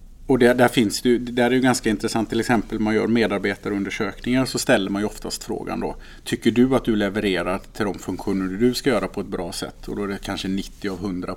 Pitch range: 100-125 Hz